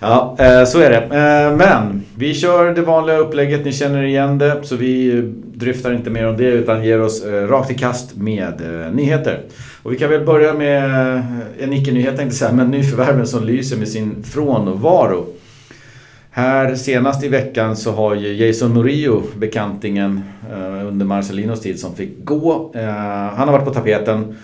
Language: Swedish